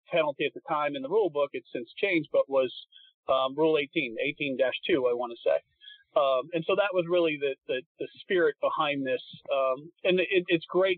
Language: English